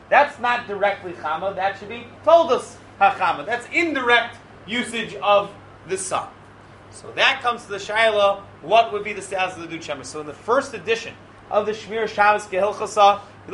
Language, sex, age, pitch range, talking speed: English, male, 30-49, 195-240 Hz, 185 wpm